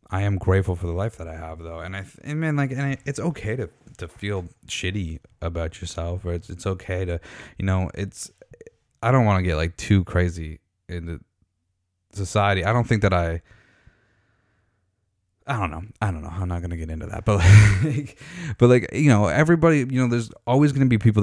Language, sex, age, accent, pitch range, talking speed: English, male, 20-39, American, 85-105 Hz, 220 wpm